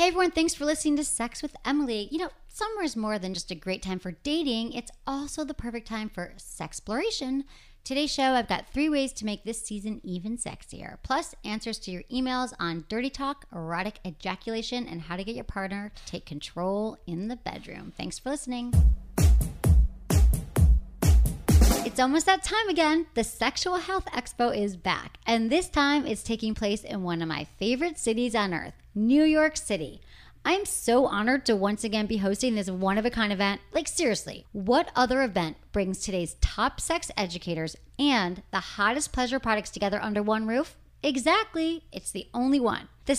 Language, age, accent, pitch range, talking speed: English, 30-49, American, 200-285 Hz, 185 wpm